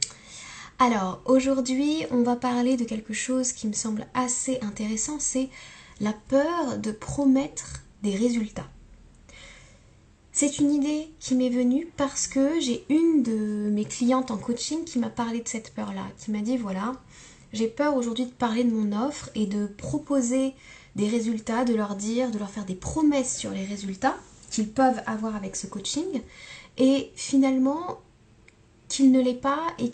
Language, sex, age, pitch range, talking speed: French, female, 10-29, 210-265 Hz, 165 wpm